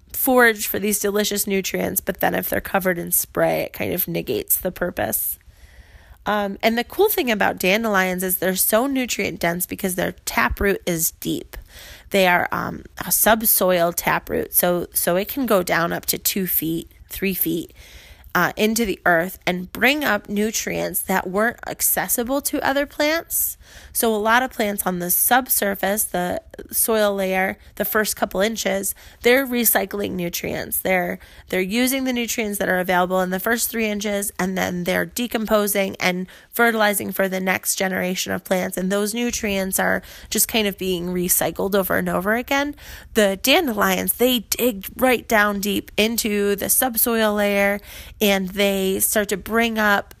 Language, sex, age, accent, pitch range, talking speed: English, female, 20-39, American, 185-225 Hz, 165 wpm